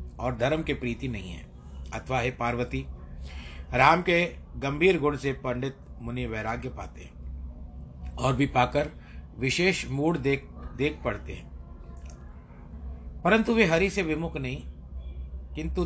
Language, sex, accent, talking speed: Hindi, male, native, 130 wpm